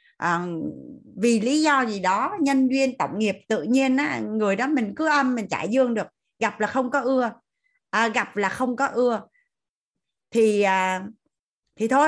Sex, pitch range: female, 205-275 Hz